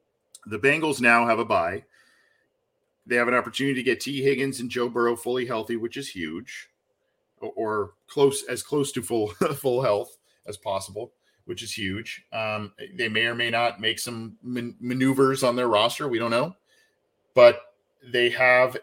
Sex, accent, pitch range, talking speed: male, American, 105-140 Hz, 170 wpm